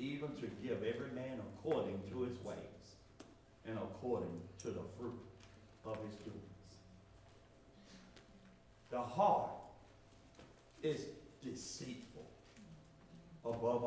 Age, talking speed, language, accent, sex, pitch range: 60-79, 95 wpm, English, American, male, 110-160 Hz